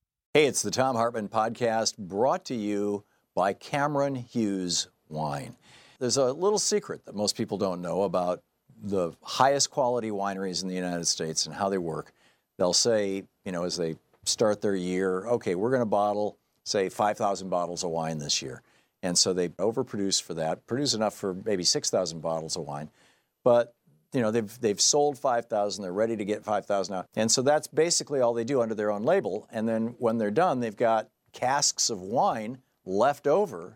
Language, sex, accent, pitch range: English, male, American, 95-130 Hz